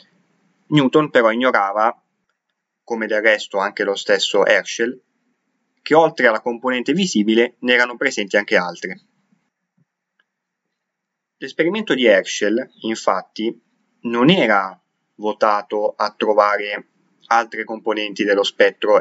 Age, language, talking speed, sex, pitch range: 20-39, Italian, 105 wpm, male, 120-185 Hz